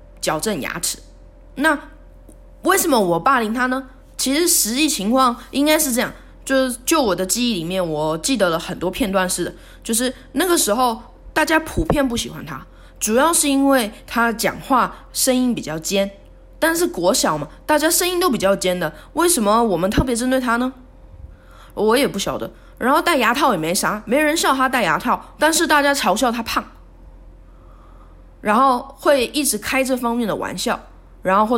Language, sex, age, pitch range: Chinese, female, 20-39, 185-270 Hz